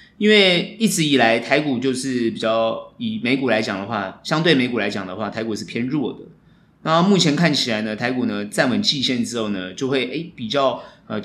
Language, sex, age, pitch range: Chinese, male, 20-39, 120-185 Hz